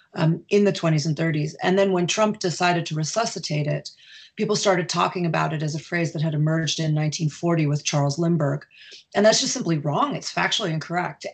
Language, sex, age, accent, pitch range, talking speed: English, female, 30-49, American, 160-195 Hz, 200 wpm